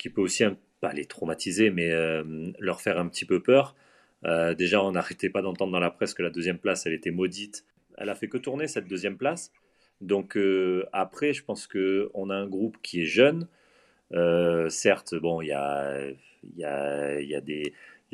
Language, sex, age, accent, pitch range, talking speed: French, male, 30-49, French, 85-110 Hz, 180 wpm